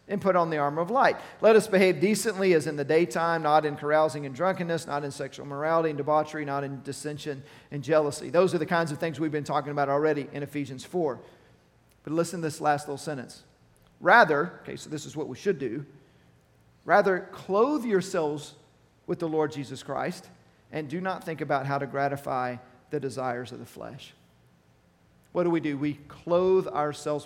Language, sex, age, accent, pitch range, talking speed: English, male, 40-59, American, 135-170 Hz, 195 wpm